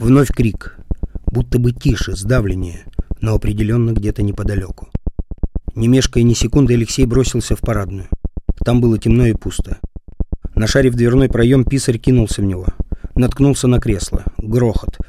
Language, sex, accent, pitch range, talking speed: Russian, male, native, 90-115 Hz, 140 wpm